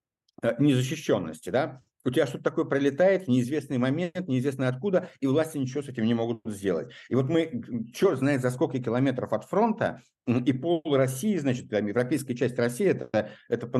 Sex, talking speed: male, 175 wpm